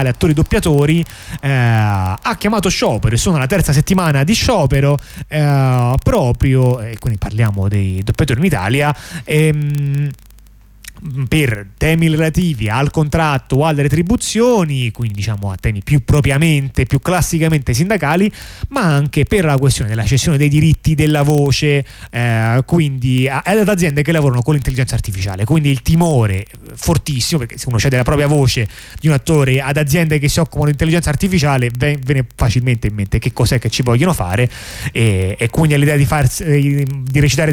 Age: 30-49